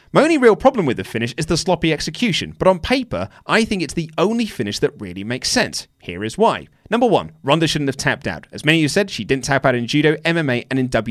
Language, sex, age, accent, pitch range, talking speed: English, male, 30-49, British, 115-160 Hz, 260 wpm